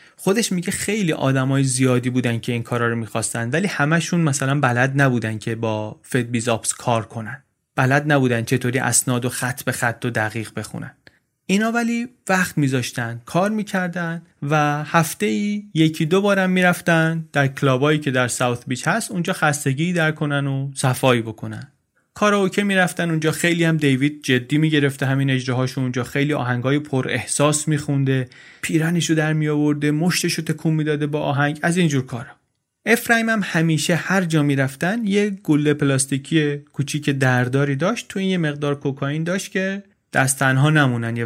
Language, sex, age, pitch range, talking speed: Persian, male, 30-49, 130-170 Hz, 165 wpm